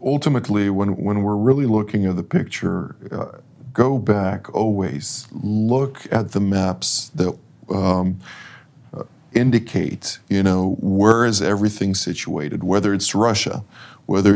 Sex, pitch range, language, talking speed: male, 95-120 Hz, English, 130 wpm